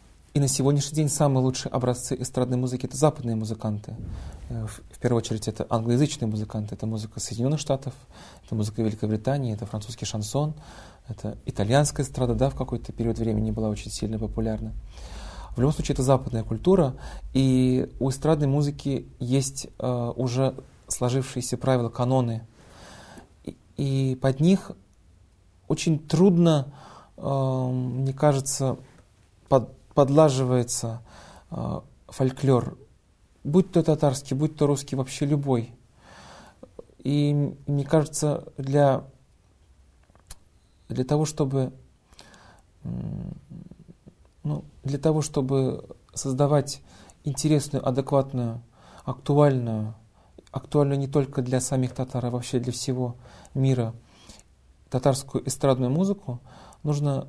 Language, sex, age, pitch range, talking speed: Russian, male, 30-49, 115-145 Hz, 110 wpm